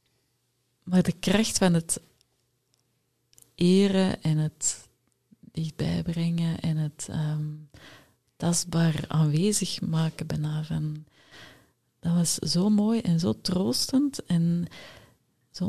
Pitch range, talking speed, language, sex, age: 135-175 Hz, 90 wpm, Dutch, female, 30-49